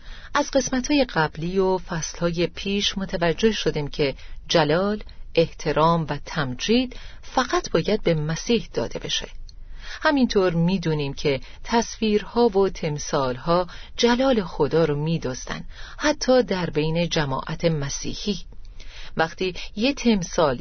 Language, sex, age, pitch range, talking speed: Persian, female, 40-59, 150-210 Hz, 110 wpm